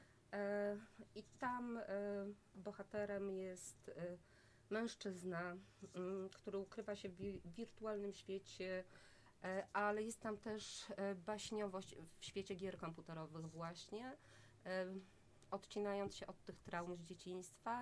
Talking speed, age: 95 wpm, 20-39